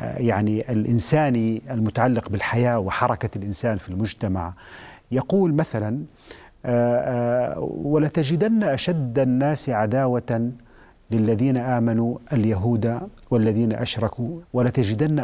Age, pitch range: 40-59, 110-140 Hz